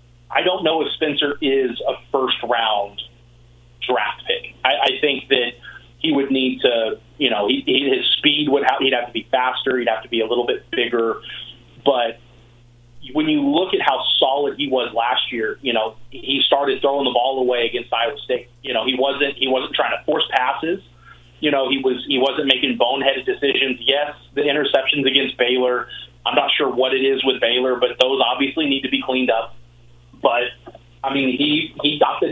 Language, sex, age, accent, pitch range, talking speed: English, male, 30-49, American, 120-140 Hz, 200 wpm